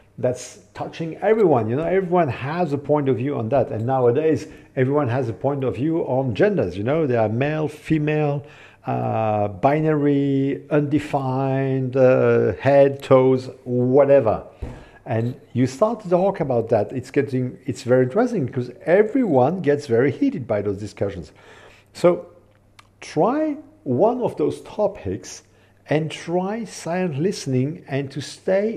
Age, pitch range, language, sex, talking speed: 50-69, 125-170 Hz, English, male, 145 wpm